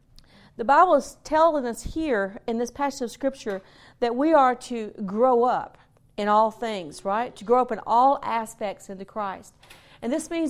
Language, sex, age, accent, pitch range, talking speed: English, female, 40-59, American, 215-275 Hz, 185 wpm